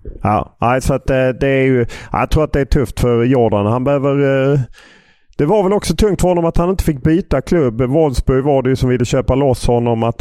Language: English